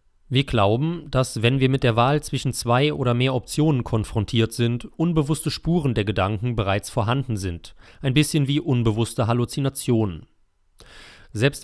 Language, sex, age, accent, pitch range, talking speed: German, male, 30-49, German, 105-135 Hz, 145 wpm